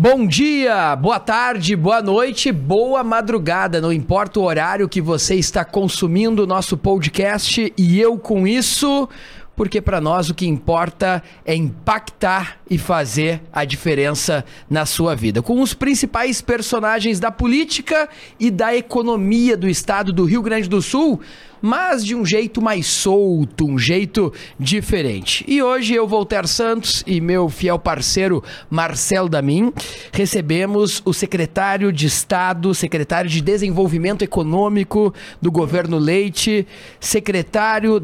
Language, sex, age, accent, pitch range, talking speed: Portuguese, male, 30-49, Brazilian, 165-210 Hz, 135 wpm